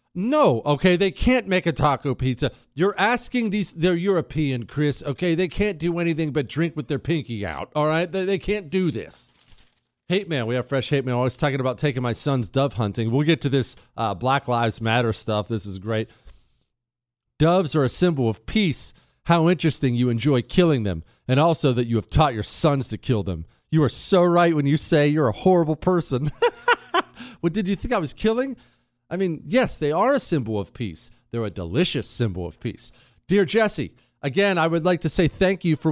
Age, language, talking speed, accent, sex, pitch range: 40-59, English, 210 wpm, American, male, 125-180 Hz